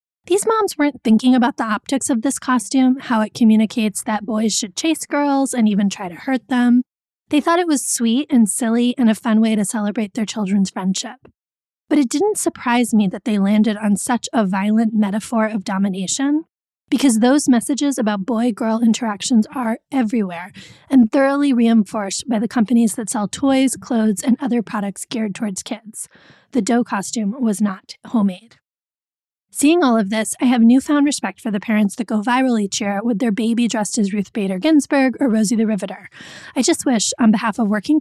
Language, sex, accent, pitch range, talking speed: English, female, American, 215-260 Hz, 190 wpm